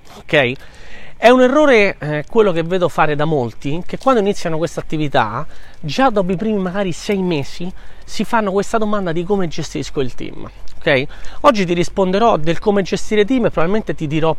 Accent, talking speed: native, 175 wpm